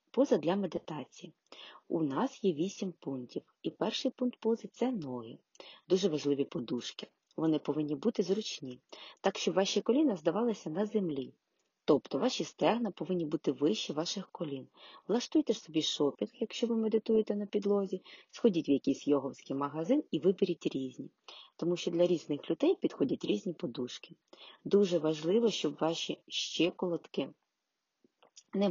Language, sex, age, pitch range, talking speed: Ukrainian, female, 30-49, 155-225 Hz, 140 wpm